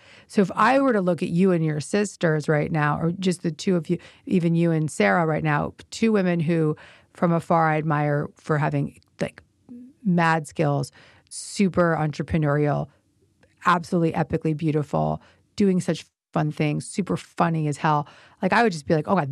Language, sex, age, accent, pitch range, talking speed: English, female, 30-49, American, 150-185 Hz, 180 wpm